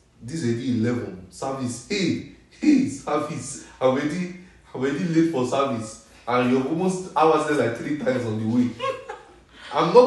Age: 30-49